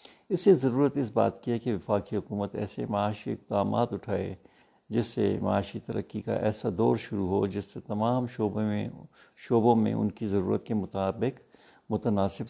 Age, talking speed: 60-79, 175 wpm